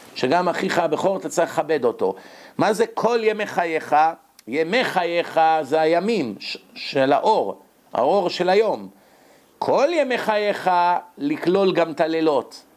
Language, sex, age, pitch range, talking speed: English, male, 50-69, 155-230 Hz, 130 wpm